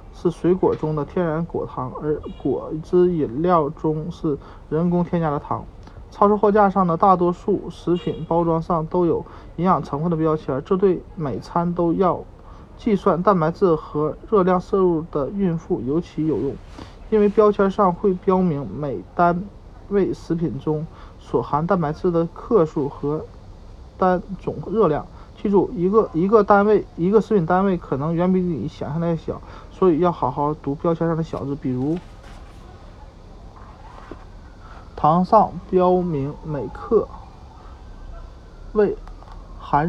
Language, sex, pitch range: Chinese, male, 145-185 Hz